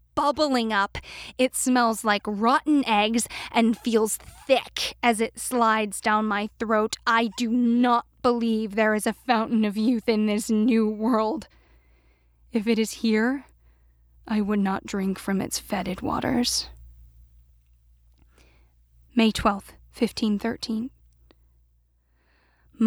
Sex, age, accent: female, 10-29, American